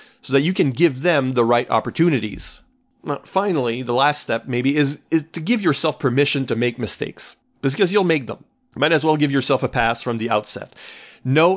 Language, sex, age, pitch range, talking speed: English, male, 40-59, 120-160 Hz, 195 wpm